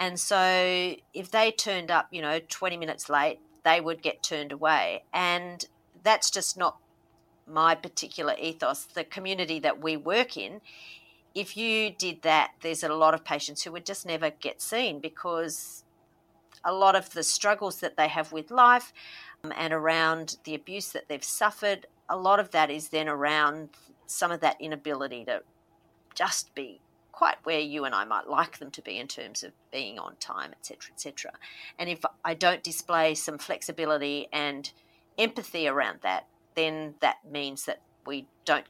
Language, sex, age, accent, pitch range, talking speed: English, female, 40-59, Australian, 150-175 Hz, 175 wpm